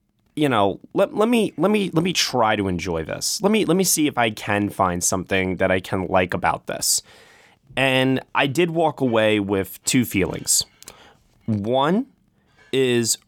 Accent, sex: American, male